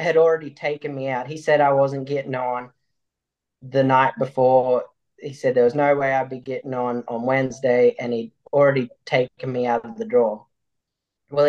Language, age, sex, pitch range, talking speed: English, 10-29, male, 130-145 Hz, 190 wpm